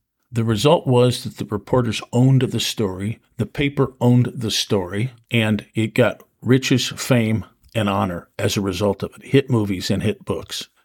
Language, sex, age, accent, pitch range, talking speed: English, male, 50-69, American, 105-125 Hz, 170 wpm